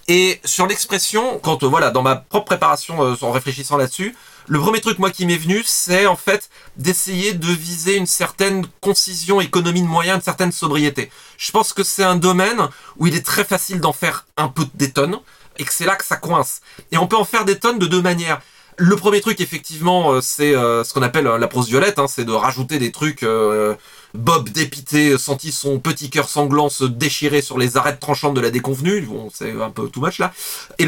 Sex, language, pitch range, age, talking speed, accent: male, French, 145-190 Hz, 30-49, 220 wpm, French